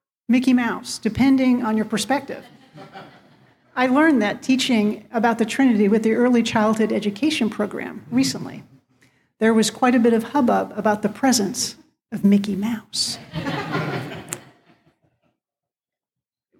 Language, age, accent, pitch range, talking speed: English, 50-69, American, 210-260 Hz, 125 wpm